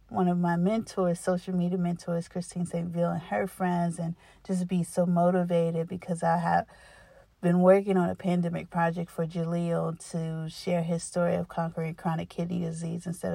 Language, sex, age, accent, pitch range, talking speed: English, female, 30-49, American, 170-185 Hz, 175 wpm